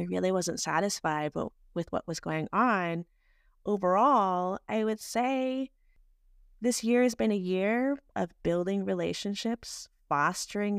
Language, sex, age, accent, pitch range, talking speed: English, female, 30-49, American, 165-200 Hz, 130 wpm